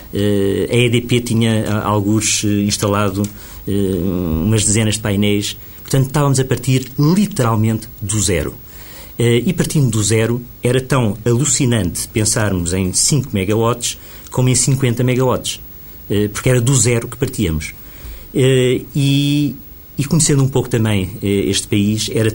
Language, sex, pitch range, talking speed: Portuguese, male, 95-120 Hz, 140 wpm